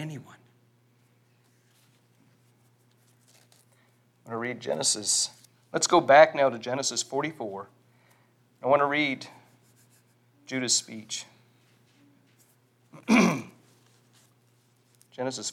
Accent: American